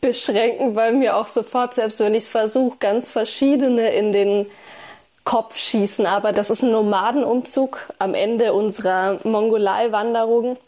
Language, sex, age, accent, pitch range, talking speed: German, female, 20-39, German, 205-245 Hz, 140 wpm